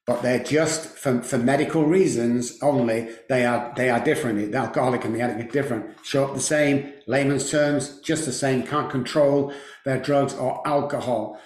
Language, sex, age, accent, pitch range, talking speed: English, male, 50-69, British, 130-160 Hz, 185 wpm